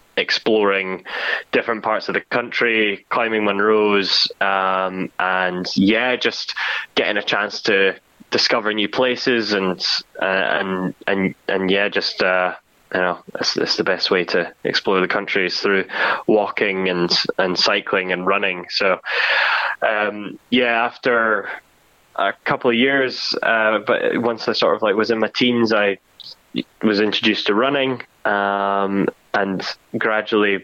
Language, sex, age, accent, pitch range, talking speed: English, male, 10-29, British, 100-120 Hz, 145 wpm